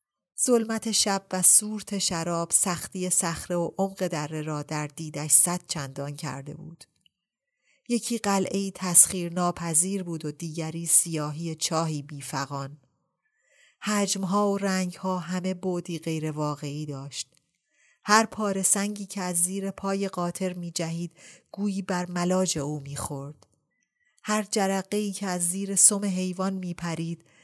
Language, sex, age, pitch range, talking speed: Persian, female, 30-49, 155-195 Hz, 125 wpm